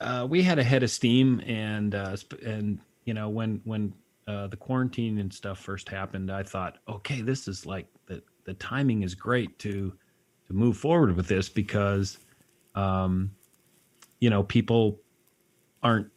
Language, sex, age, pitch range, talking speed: English, male, 30-49, 95-110 Hz, 165 wpm